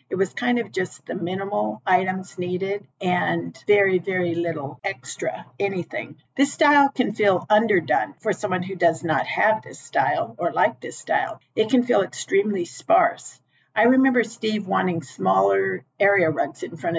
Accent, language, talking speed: American, English, 165 wpm